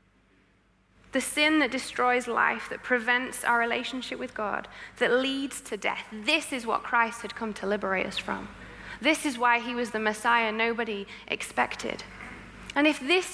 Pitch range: 210-275 Hz